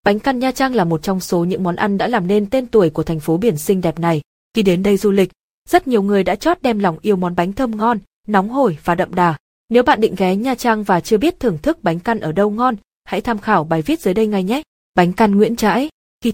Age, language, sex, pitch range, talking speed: 20-39, Vietnamese, female, 180-235 Hz, 275 wpm